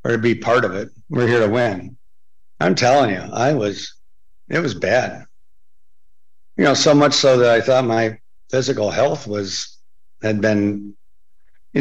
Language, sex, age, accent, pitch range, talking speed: English, male, 60-79, American, 105-120 Hz, 170 wpm